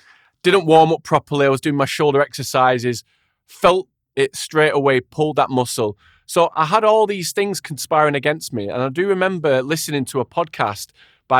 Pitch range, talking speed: 125-175 Hz, 185 wpm